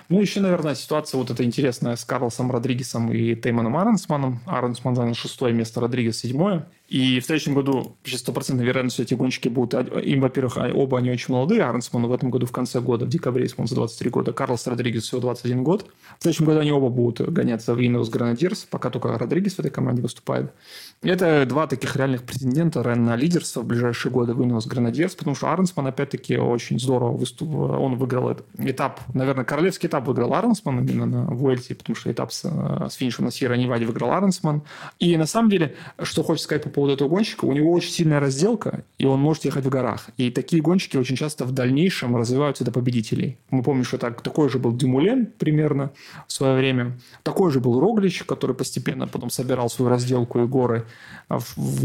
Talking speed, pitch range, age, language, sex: 190 wpm, 120-155 Hz, 30-49, Russian, male